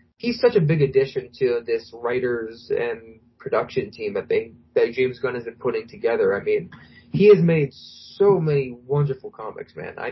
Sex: male